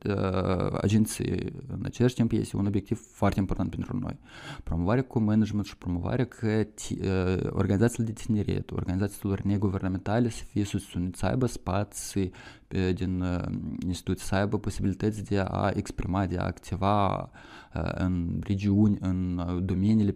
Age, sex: 20-39, male